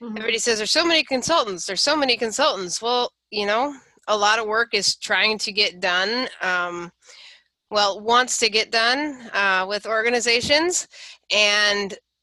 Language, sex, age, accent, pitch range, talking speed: English, female, 30-49, American, 190-230 Hz, 155 wpm